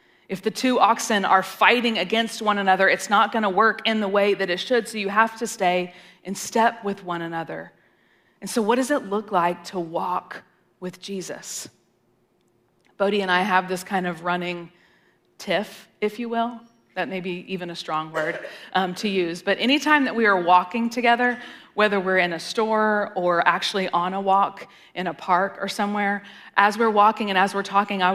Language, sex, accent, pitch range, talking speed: English, female, American, 190-235 Hz, 195 wpm